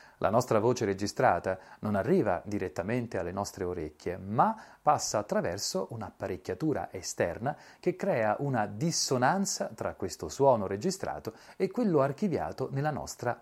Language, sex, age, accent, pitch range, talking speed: Italian, male, 40-59, native, 100-155 Hz, 125 wpm